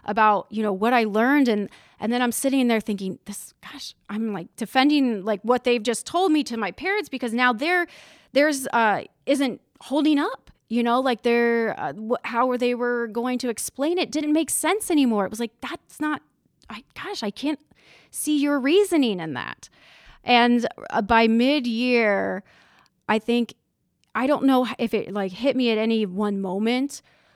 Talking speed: 180 wpm